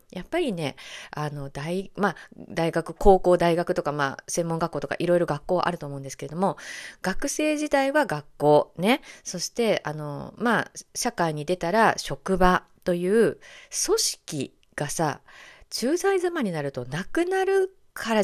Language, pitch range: Japanese, 155-250 Hz